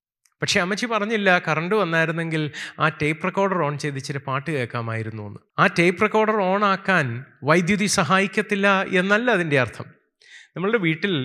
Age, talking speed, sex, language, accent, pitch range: 30-49, 135 wpm, male, Malayalam, native, 135-200 Hz